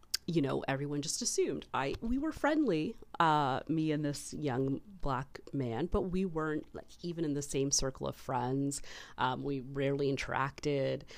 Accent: American